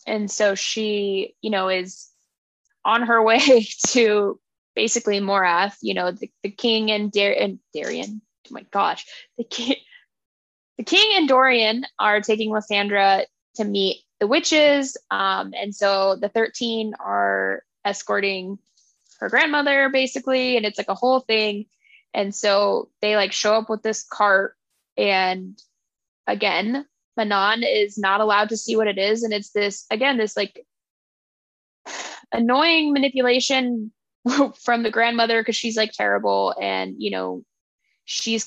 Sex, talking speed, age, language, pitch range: female, 145 wpm, 10-29, English, 200-255 Hz